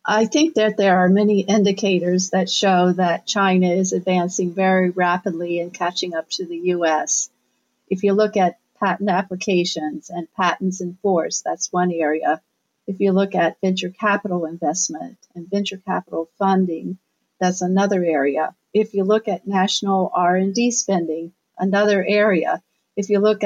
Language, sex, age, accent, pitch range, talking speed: English, female, 50-69, American, 180-215 Hz, 150 wpm